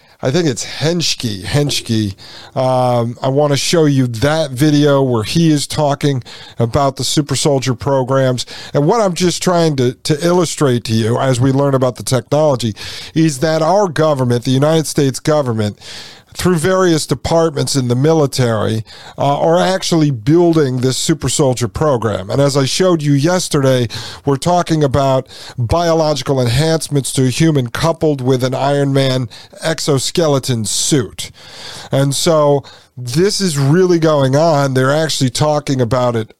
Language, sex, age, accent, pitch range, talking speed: English, male, 50-69, American, 125-160 Hz, 155 wpm